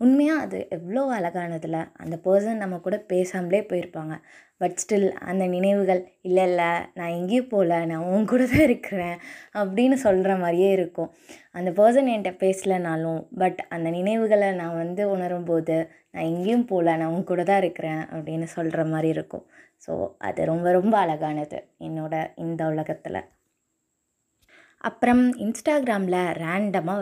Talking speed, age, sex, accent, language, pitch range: 130 wpm, 20-39, female, native, Tamil, 170-215 Hz